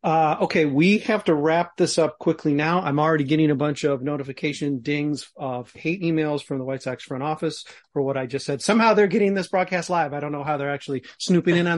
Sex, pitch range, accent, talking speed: male, 140-170 Hz, American, 240 wpm